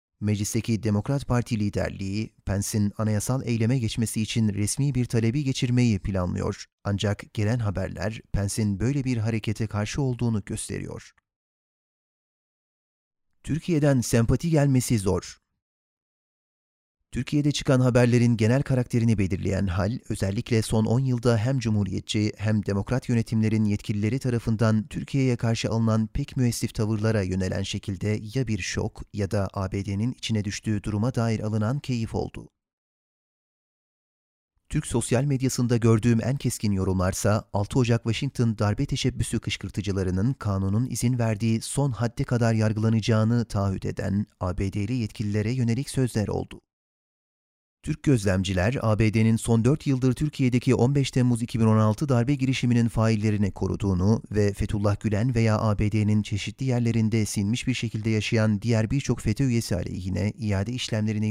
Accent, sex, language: native, male, Turkish